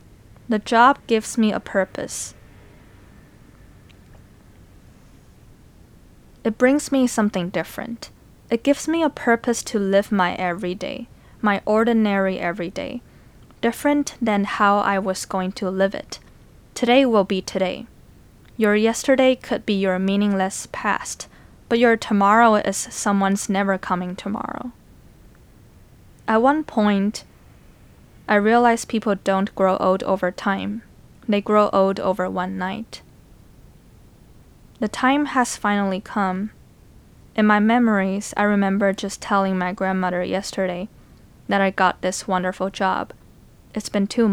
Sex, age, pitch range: female, 10-29, 190-230 Hz